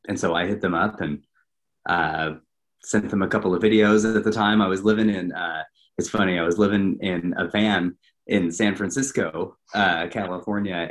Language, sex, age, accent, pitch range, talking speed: English, male, 30-49, American, 90-110 Hz, 195 wpm